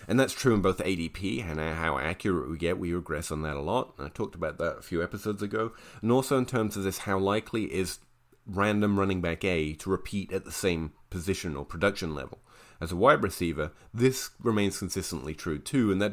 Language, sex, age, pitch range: English, male, 30-49, 85-105 Hz